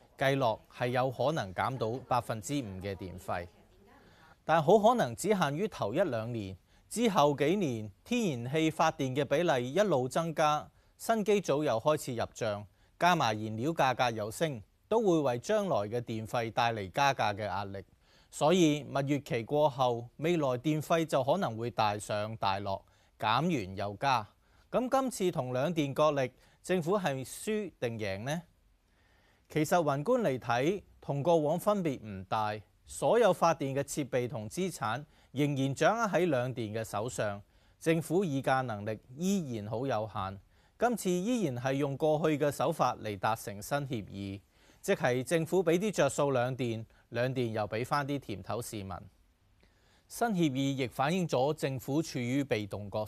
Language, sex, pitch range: Chinese, male, 105-155 Hz